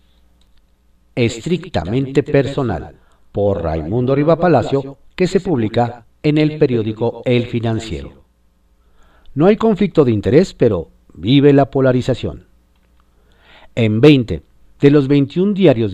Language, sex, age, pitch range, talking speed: Spanish, male, 50-69, 85-140 Hz, 110 wpm